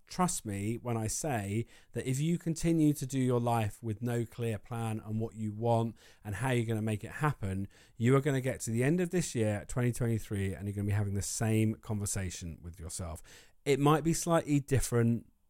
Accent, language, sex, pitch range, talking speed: British, English, male, 105-135 Hz, 220 wpm